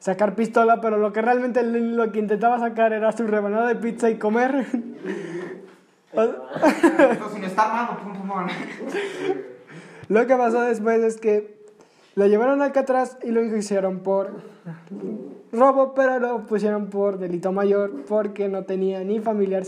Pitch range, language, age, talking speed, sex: 200-230 Hz, Spanish, 20-39, 135 wpm, male